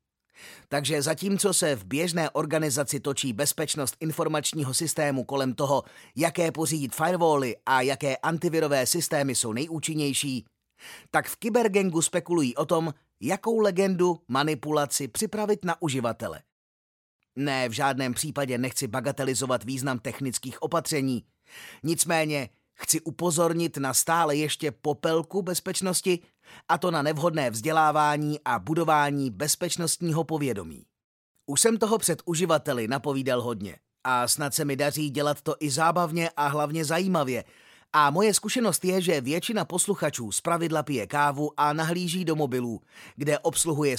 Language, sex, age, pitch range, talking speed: Czech, male, 30-49, 135-165 Hz, 130 wpm